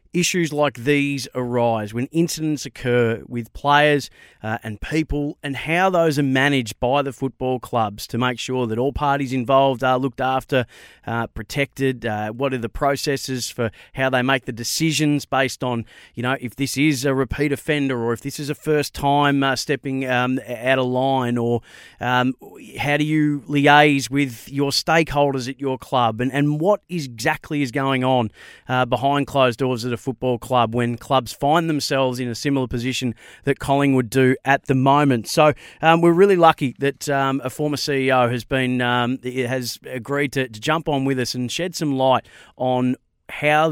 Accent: Australian